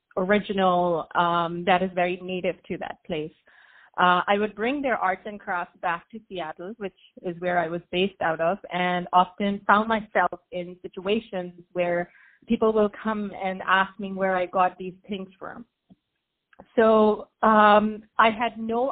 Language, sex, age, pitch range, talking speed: English, female, 30-49, 185-220 Hz, 165 wpm